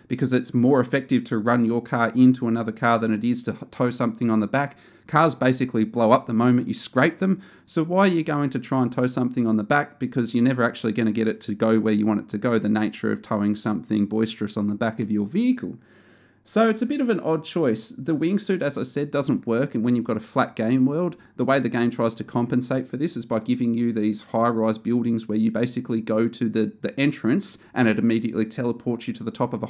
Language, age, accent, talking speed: English, 30-49, Australian, 255 wpm